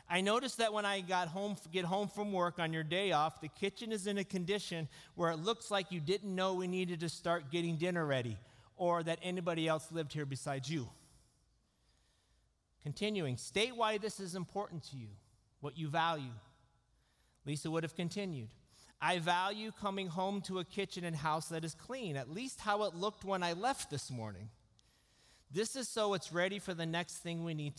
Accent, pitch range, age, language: American, 135-185 Hz, 40-59, English